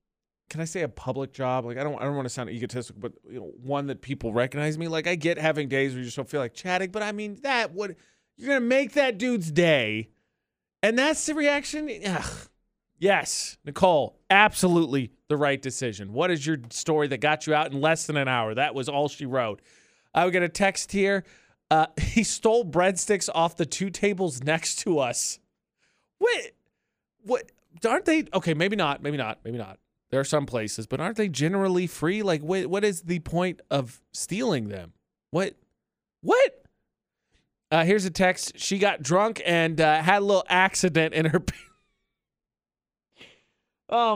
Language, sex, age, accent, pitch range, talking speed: English, male, 30-49, American, 135-200 Hz, 190 wpm